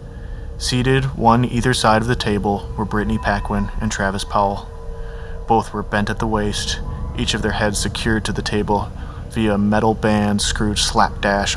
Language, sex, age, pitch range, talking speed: English, male, 20-39, 95-110 Hz, 170 wpm